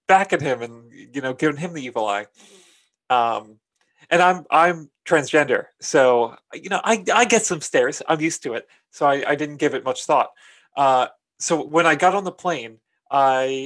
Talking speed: 200 wpm